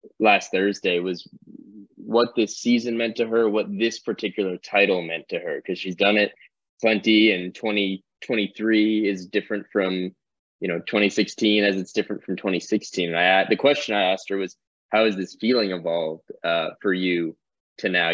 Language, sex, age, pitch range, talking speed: English, male, 20-39, 95-110 Hz, 170 wpm